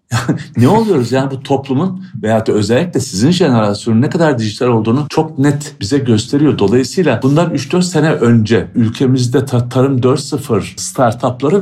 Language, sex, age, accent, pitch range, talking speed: Turkish, male, 60-79, native, 100-135 Hz, 135 wpm